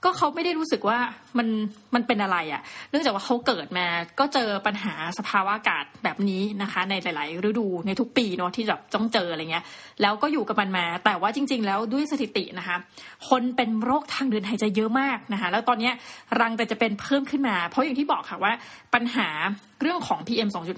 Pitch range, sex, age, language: 200-250 Hz, female, 20-39, Thai